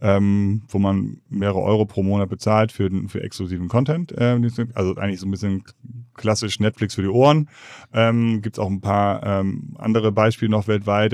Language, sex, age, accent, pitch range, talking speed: German, male, 30-49, German, 100-120 Hz, 180 wpm